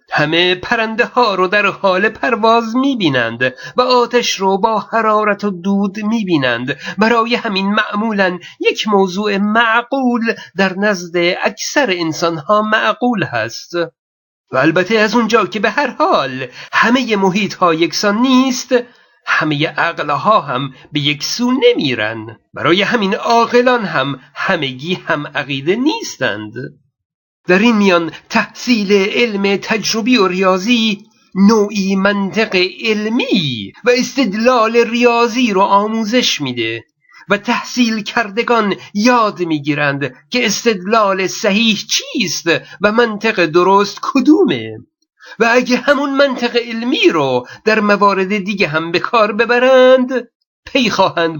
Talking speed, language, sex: 125 wpm, Persian, male